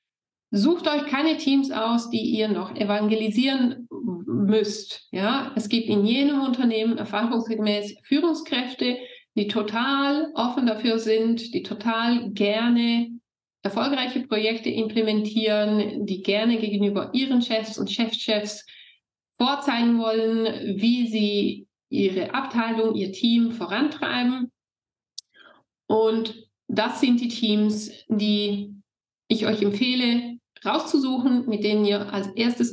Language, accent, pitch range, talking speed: German, German, 210-255 Hz, 110 wpm